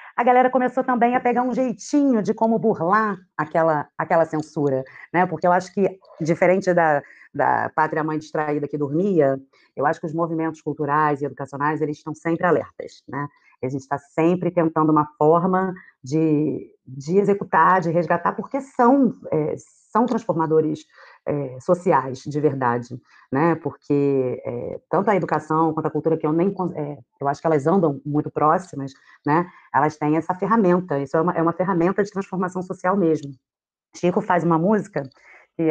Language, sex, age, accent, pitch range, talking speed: Portuguese, female, 30-49, Brazilian, 150-195 Hz, 170 wpm